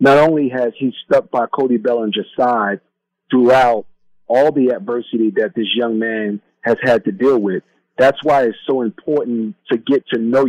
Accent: American